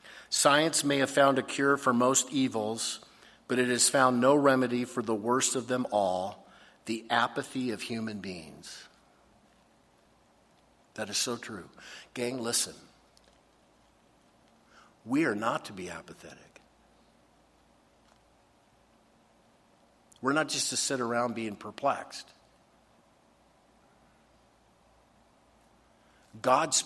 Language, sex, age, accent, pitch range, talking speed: English, male, 60-79, American, 120-150 Hz, 105 wpm